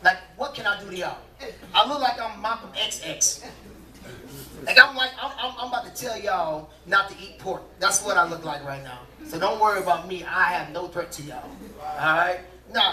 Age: 30-49